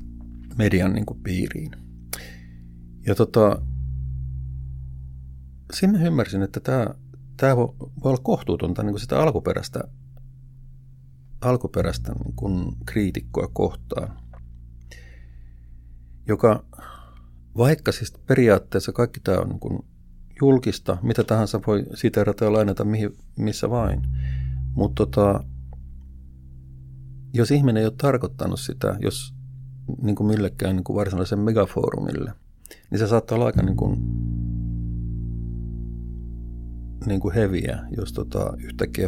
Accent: native